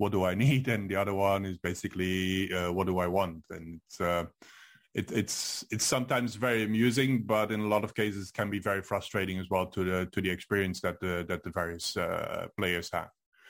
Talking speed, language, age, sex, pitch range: 220 wpm, English, 30-49, male, 95-110 Hz